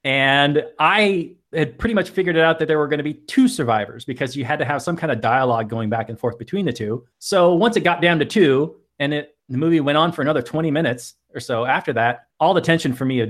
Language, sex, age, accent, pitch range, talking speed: English, male, 30-49, American, 115-150 Hz, 260 wpm